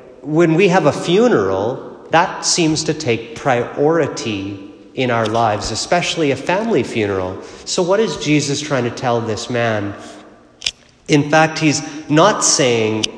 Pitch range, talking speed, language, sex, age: 120-165 Hz, 140 wpm, English, male, 30-49